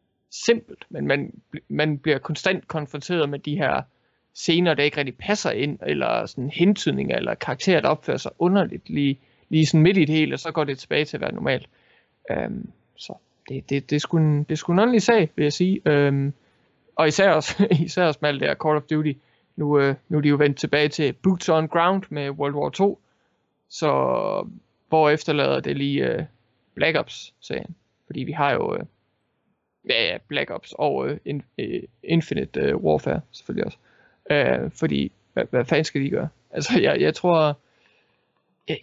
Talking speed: 185 wpm